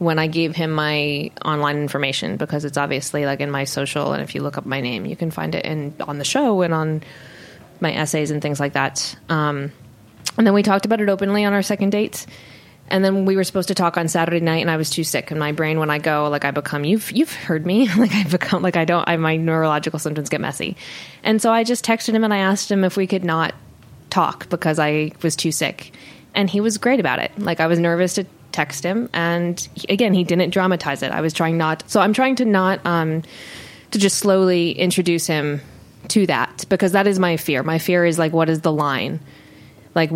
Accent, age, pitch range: American, 20-39, 155-190 Hz